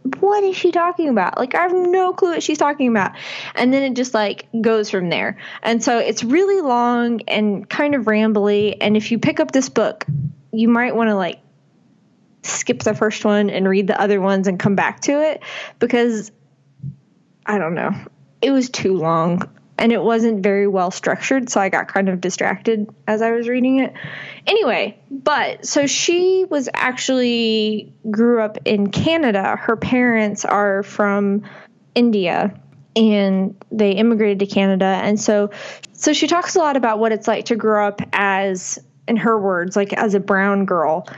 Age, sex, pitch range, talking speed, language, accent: 20-39, female, 195-245 Hz, 180 wpm, English, American